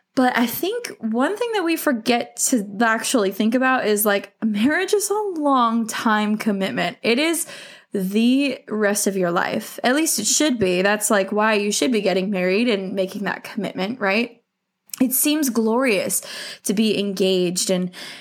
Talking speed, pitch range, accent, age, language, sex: 170 wpm, 195-240 Hz, American, 20-39, English, female